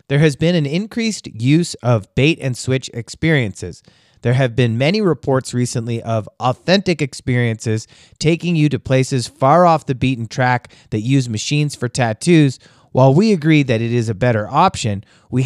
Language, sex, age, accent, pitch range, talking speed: English, male, 30-49, American, 120-155 Hz, 165 wpm